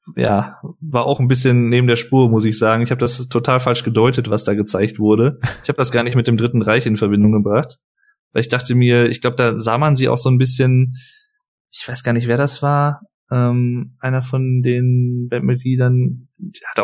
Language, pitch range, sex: German, 115-140 Hz, male